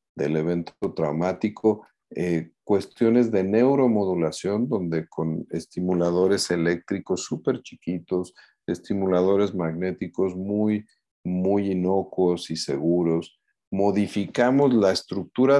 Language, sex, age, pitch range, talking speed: Spanish, male, 50-69, 85-115 Hz, 90 wpm